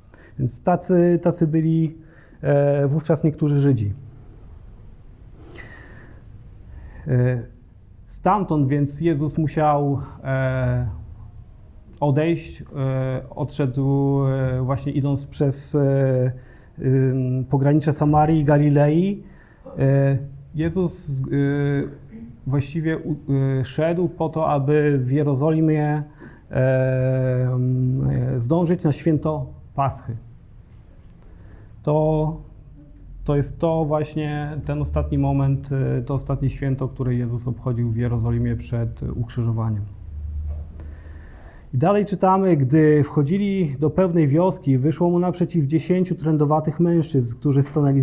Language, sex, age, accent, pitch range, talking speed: Polish, male, 40-59, native, 115-150 Hz, 80 wpm